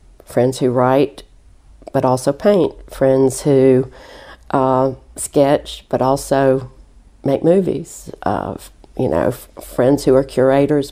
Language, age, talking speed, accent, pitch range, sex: English, 50-69, 115 wpm, American, 130-155 Hz, female